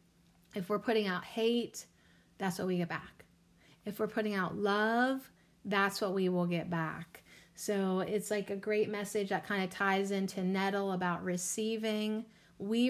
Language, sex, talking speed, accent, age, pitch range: English, female, 170 wpm, American, 30-49, 180-210 Hz